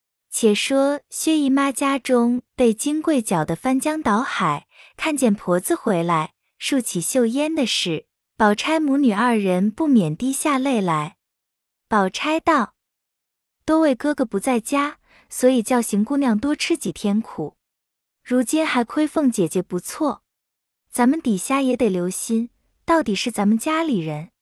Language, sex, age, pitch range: Chinese, female, 20-39, 205-295 Hz